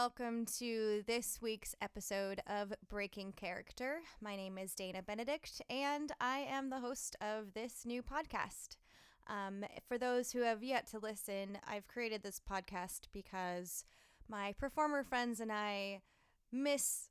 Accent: American